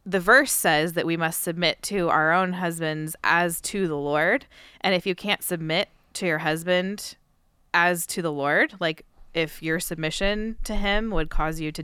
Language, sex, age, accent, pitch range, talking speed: English, female, 20-39, American, 150-175 Hz, 190 wpm